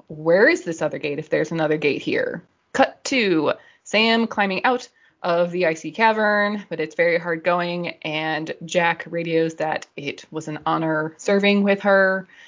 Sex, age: female, 20-39